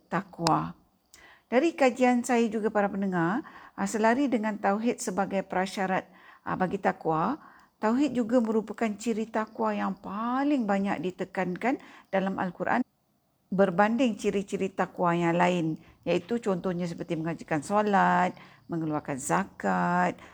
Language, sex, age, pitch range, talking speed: Malay, female, 50-69, 170-225 Hz, 110 wpm